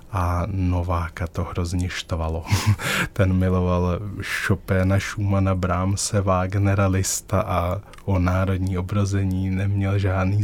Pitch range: 90-100 Hz